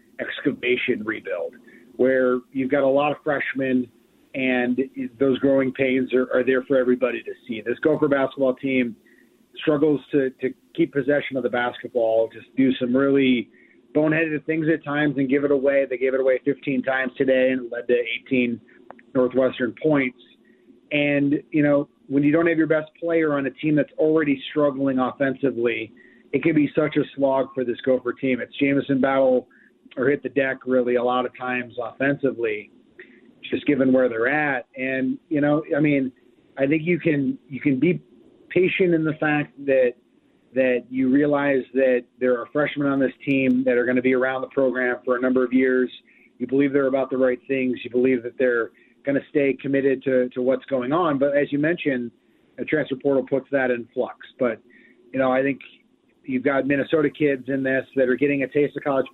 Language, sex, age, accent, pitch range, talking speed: English, male, 30-49, American, 125-145 Hz, 195 wpm